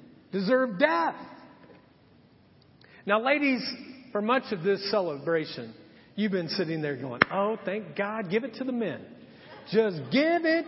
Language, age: English, 50-69